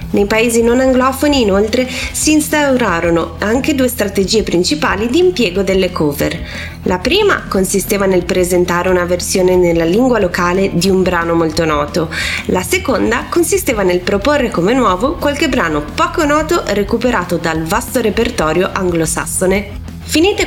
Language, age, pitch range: Italian, 20-39, 180-275 Hz